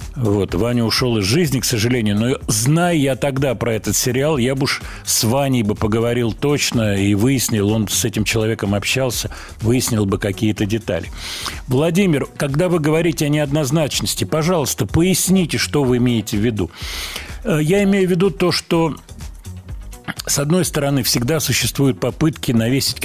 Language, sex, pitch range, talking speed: Russian, male, 105-155 Hz, 150 wpm